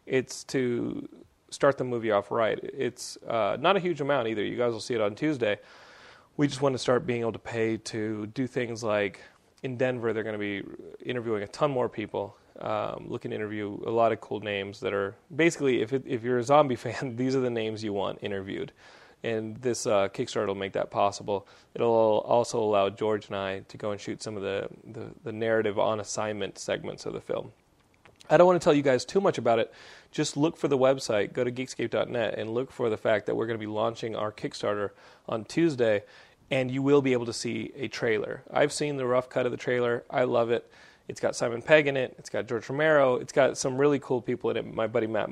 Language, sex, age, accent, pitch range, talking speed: English, male, 30-49, American, 110-140 Hz, 235 wpm